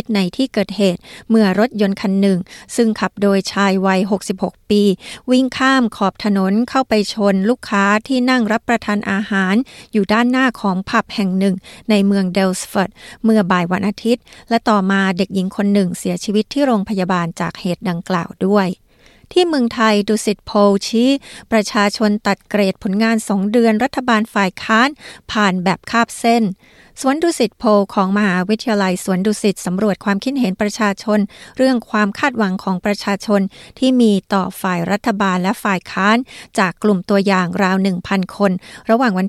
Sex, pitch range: female, 195-235 Hz